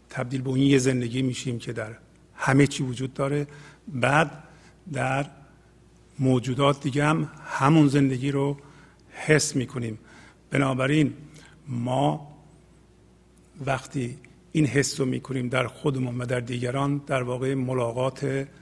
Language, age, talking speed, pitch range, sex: English, 50-69, 115 wpm, 125-145 Hz, male